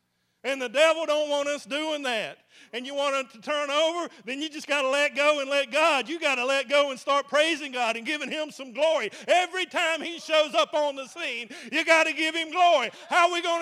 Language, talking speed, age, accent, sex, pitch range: English, 250 wpm, 50-69, American, male, 255-295 Hz